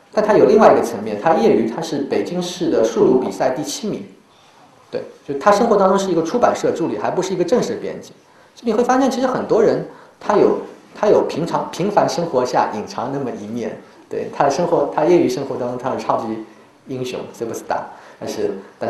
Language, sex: Chinese, male